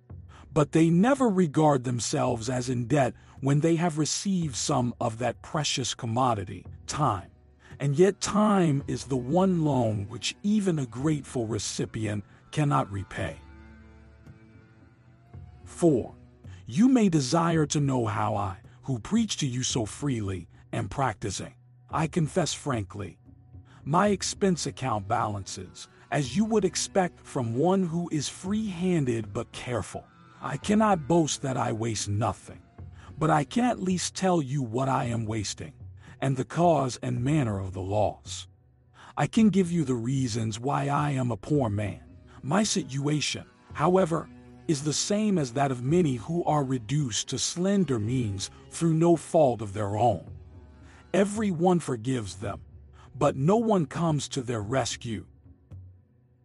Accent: American